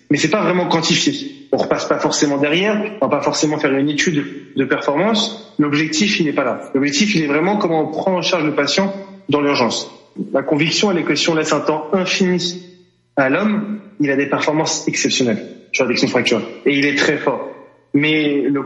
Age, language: 30-49, French